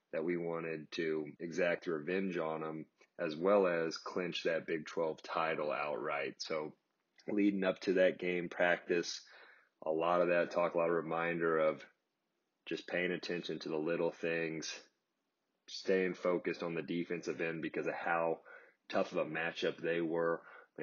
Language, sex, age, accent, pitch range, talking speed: English, male, 30-49, American, 80-85 Hz, 160 wpm